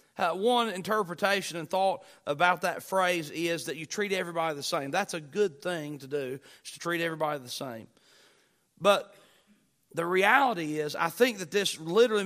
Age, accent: 40-59, American